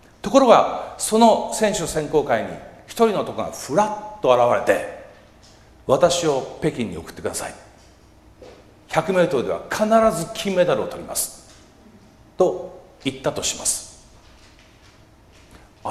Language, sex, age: Japanese, male, 50-69